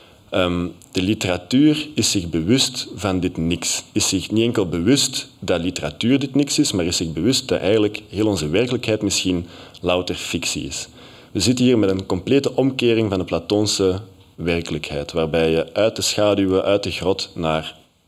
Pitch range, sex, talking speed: 85-115 Hz, male, 175 wpm